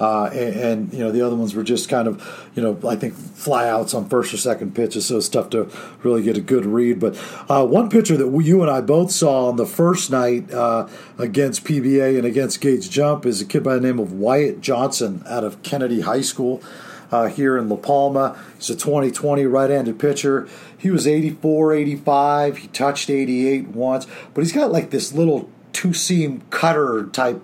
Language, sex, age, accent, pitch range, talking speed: English, male, 40-59, American, 120-150 Hz, 210 wpm